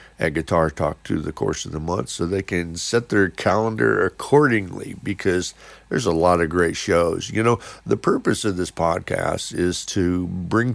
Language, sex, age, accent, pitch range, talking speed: English, male, 50-69, American, 80-95 Hz, 185 wpm